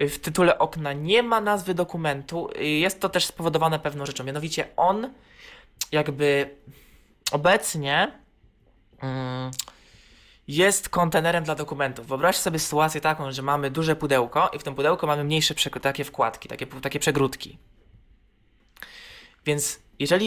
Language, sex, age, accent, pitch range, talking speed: Polish, male, 20-39, native, 140-165 Hz, 125 wpm